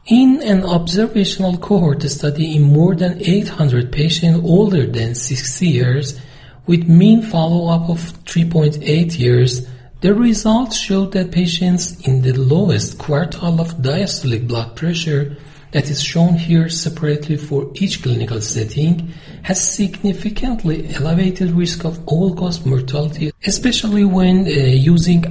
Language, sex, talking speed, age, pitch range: Persian, male, 125 wpm, 40-59, 140-175 Hz